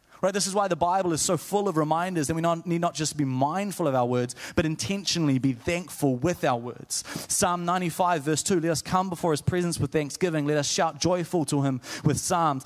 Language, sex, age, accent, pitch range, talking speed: English, male, 20-39, Australian, 140-180 Hz, 230 wpm